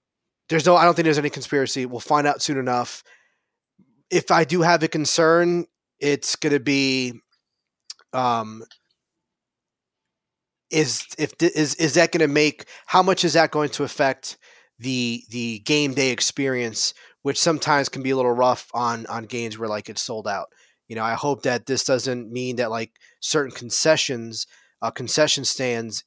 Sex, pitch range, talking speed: male, 120-155 Hz, 175 wpm